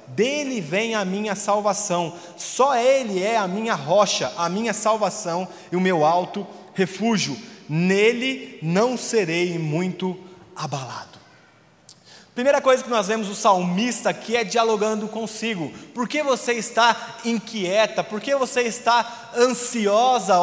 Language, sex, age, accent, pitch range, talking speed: Portuguese, male, 20-39, Brazilian, 185-255 Hz, 130 wpm